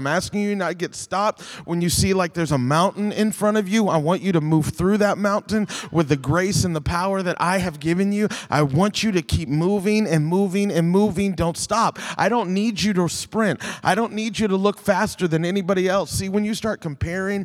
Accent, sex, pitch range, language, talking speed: American, male, 145-200 Hz, English, 245 wpm